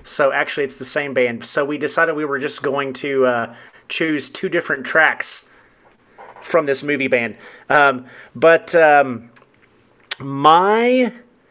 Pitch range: 125-175 Hz